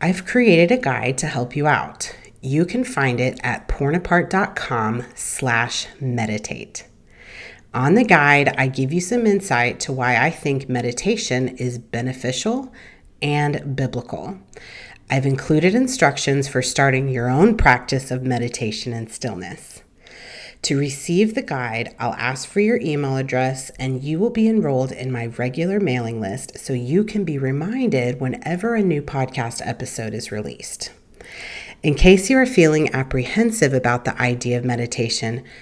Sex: female